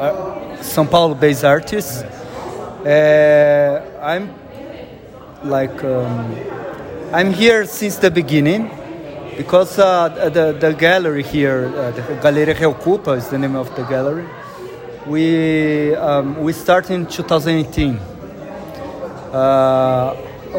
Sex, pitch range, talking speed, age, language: male, 140-175 Hz, 100 wpm, 30-49, English